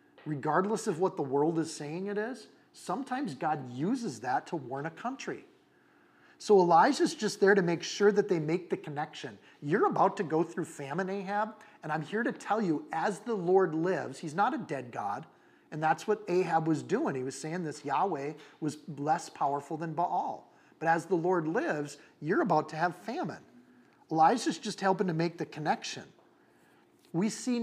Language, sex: English, male